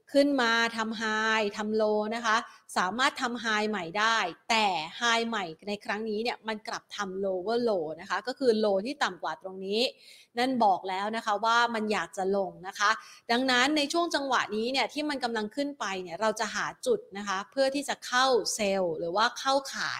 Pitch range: 200-245 Hz